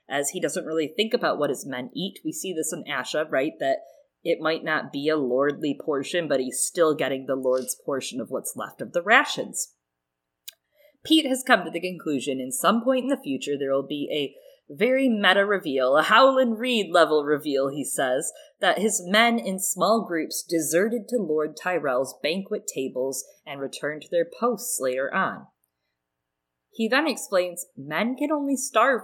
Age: 20-39